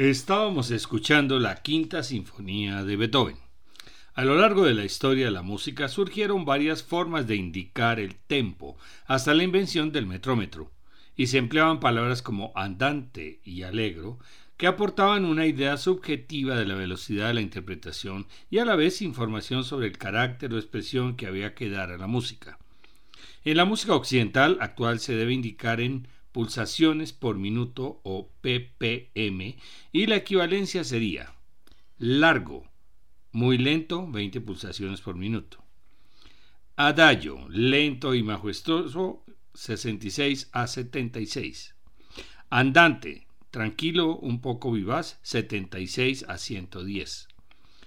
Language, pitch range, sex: Spanish, 105-145 Hz, male